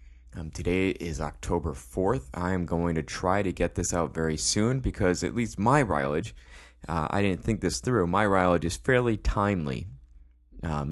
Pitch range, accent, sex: 75-100 Hz, American, male